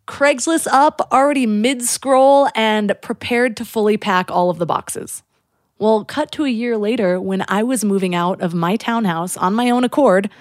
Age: 30-49